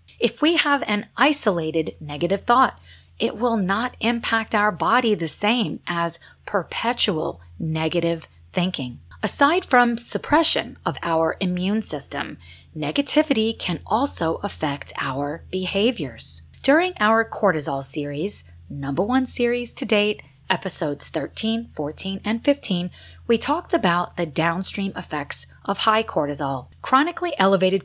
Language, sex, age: English, female, 30-49